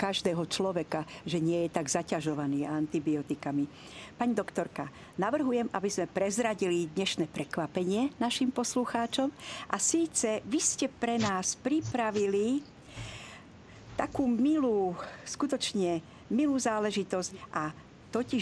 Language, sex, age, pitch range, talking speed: Slovak, female, 50-69, 180-235 Hz, 105 wpm